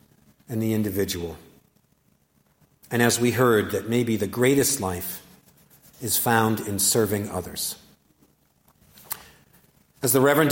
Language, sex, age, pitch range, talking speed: English, male, 50-69, 115-155 Hz, 115 wpm